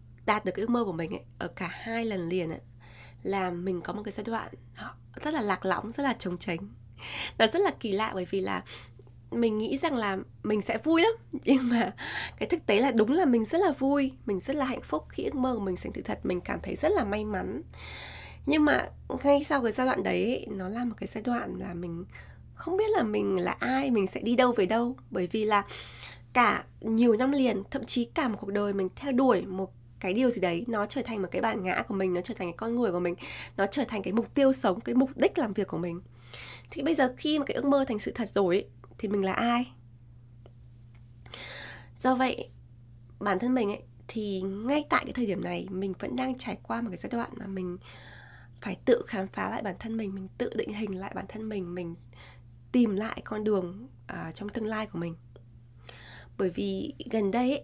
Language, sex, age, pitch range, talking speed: Vietnamese, female, 20-39, 175-245 Hz, 235 wpm